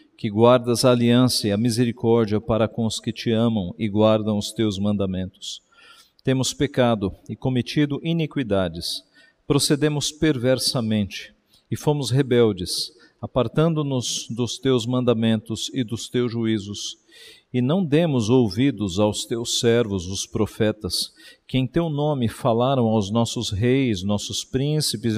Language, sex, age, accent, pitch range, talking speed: Portuguese, male, 50-69, Brazilian, 110-135 Hz, 130 wpm